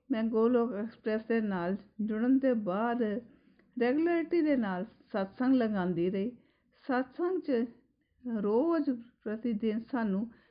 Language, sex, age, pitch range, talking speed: Punjabi, female, 50-69, 190-240 Hz, 115 wpm